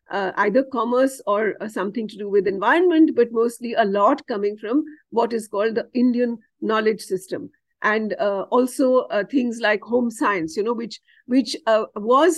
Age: 50-69